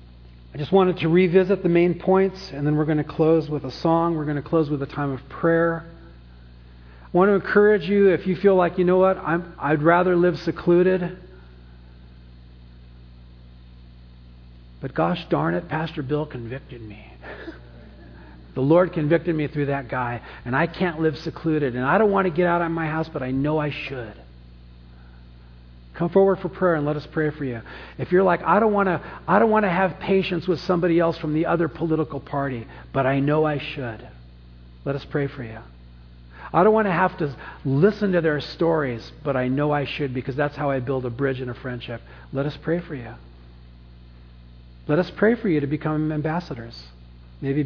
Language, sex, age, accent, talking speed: English, male, 40-59, American, 195 wpm